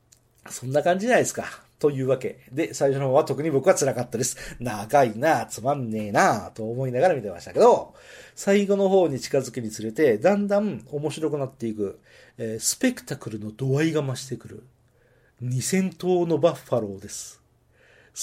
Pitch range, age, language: 125-175 Hz, 40-59, Japanese